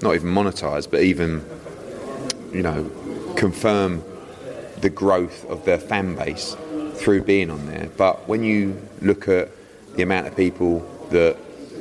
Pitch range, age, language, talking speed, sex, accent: 85-100 Hz, 30-49, English, 140 wpm, male, British